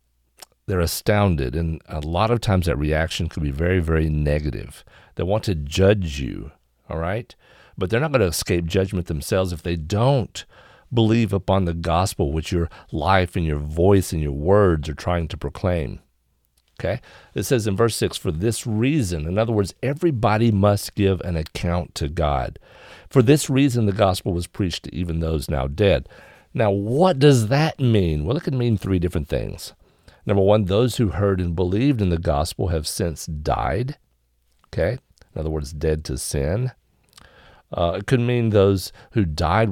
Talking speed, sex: 180 wpm, male